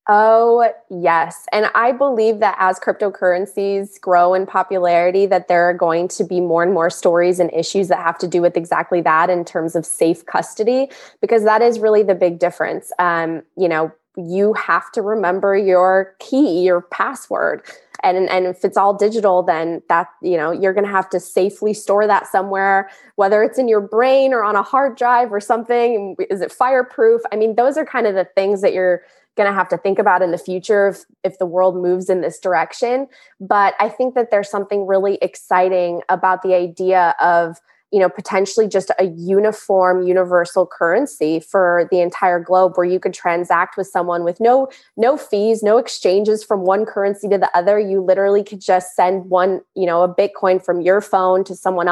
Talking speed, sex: 195 wpm, female